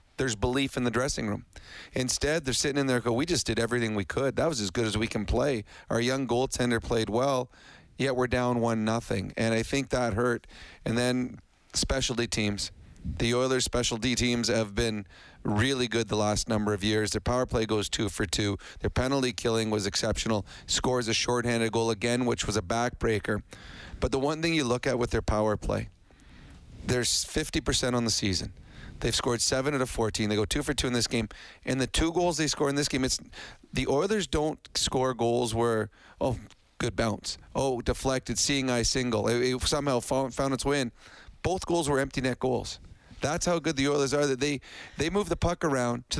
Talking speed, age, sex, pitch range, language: 210 wpm, 40-59, male, 110-130 Hz, English